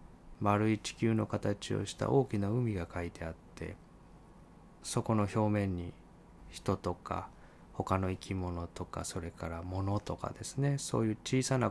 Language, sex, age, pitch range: Japanese, male, 20-39, 85-115 Hz